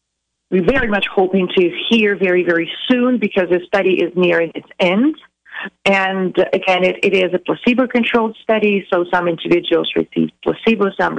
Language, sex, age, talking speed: English, female, 30-49, 160 wpm